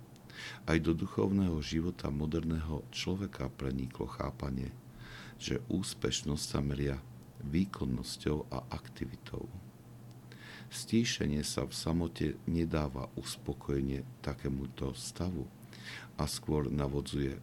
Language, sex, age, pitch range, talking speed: Slovak, male, 60-79, 65-80 Hz, 90 wpm